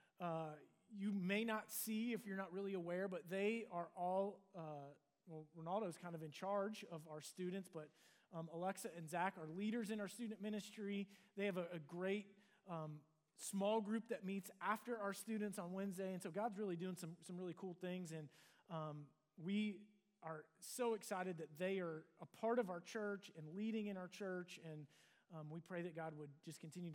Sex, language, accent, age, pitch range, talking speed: male, English, American, 30-49, 170-210 Hz, 195 wpm